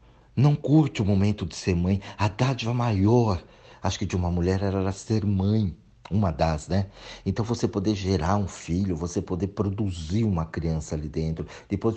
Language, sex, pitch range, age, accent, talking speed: Portuguese, male, 80-115 Hz, 60-79, Brazilian, 175 wpm